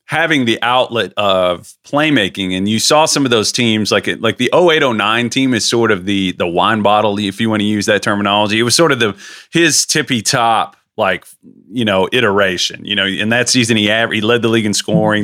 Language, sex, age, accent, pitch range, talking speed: English, male, 30-49, American, 105-145 Hz, 220 wpm